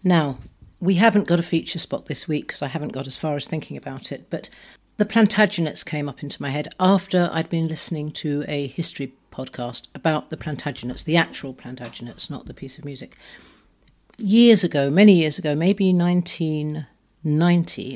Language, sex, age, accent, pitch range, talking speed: English, female, 50-69, British, 140-170 Hz, 175 wpm